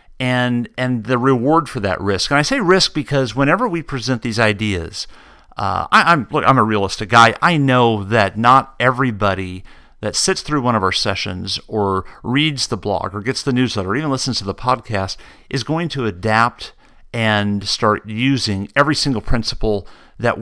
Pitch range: 105-140 Hz